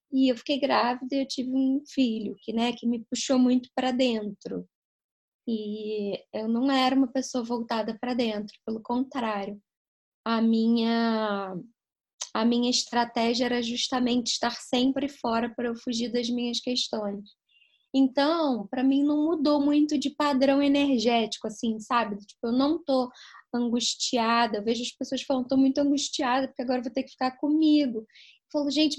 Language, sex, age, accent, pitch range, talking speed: Portuguese, female, 10-29, Brazilian, 225-270 Hz, 160 wpm